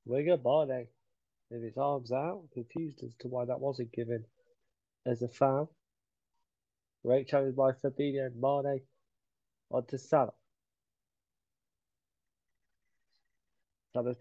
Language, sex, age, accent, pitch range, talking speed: English, male, 30-49, British, 125-170 Hz, 110 wpm